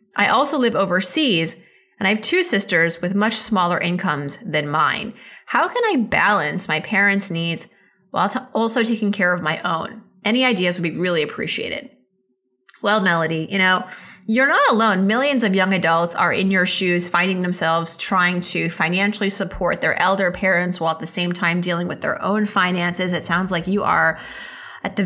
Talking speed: 180 wpm